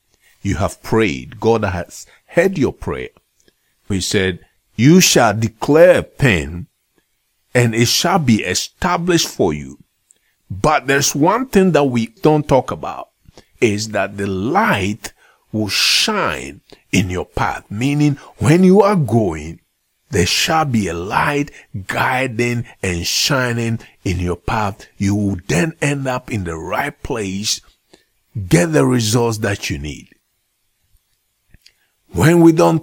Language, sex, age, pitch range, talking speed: English, male, 50-69, 100-150 Hz, 135 wpm